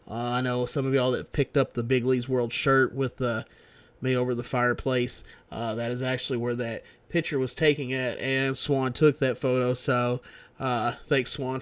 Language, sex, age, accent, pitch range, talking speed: English, male, 30-49, American, 120-135 Hz, 200 wpm